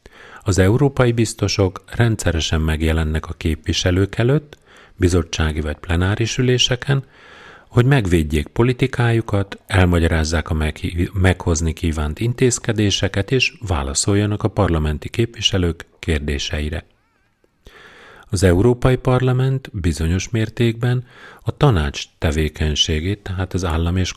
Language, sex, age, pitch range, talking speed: Hungarian, male, 40-59, 80-115 Hz, 95 wpm